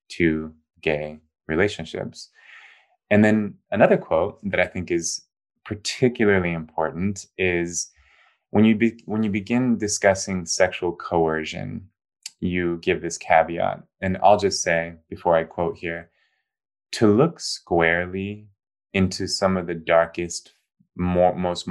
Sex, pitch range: male, 85-100 Hz